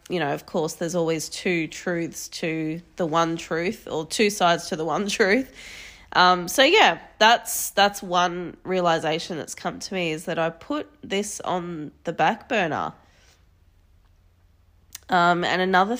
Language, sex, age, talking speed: English, female, 20-39, 160 wpm